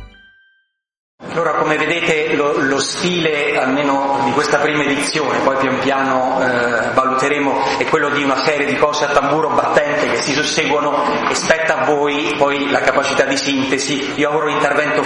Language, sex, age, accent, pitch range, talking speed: Italian, male, 30-49, native, 130-145 Hz, 165 wpm